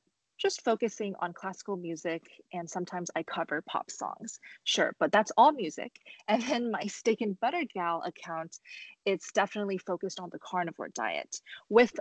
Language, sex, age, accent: English, female, 20-39, American